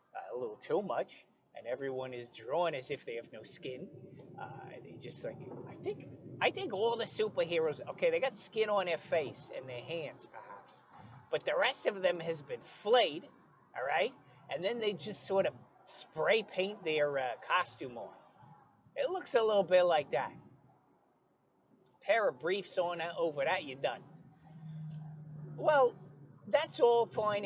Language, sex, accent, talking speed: English, male, American, 170 wpm